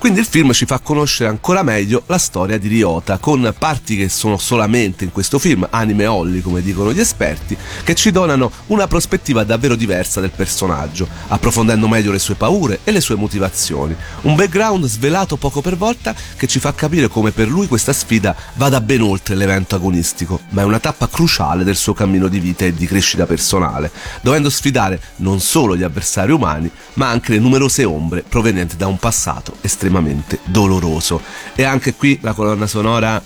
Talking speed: 185 wpm